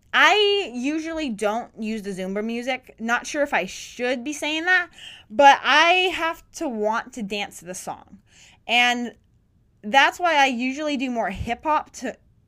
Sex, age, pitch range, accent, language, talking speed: female, 20-39, 195-285 Hz, American, English, 170 wpm